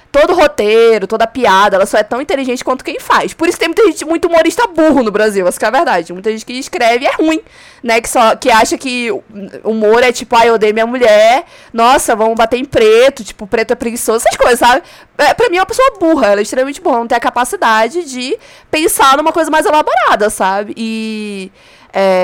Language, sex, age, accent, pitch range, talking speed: Portuguese, female, 20-39, Brazilian, 210-290 Hz, 230 wpm